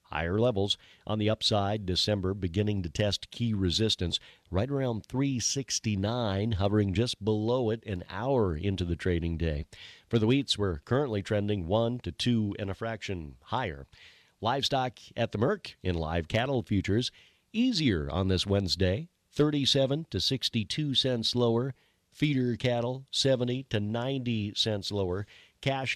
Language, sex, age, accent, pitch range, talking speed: English, male, 50-69, American, 95-120 Hz, 145 wpm